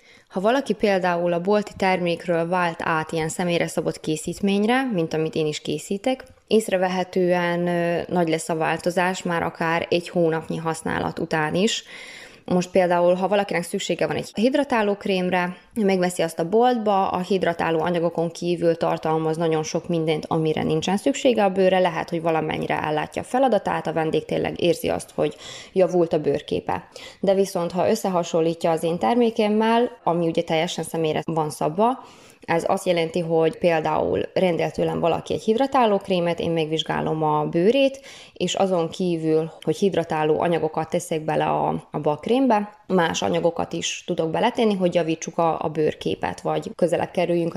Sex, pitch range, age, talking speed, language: female, 165-200 Hz, 20-39, 155 wpm, Hungarian